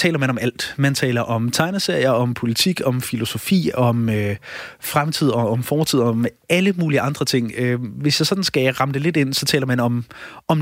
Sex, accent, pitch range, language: male, native, 120-150 Hz, Danish